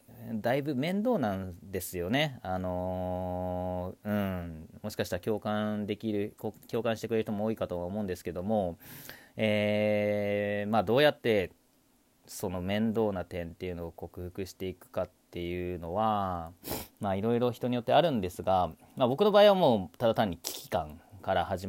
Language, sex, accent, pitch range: Japanese, male, native, 90-110 Hz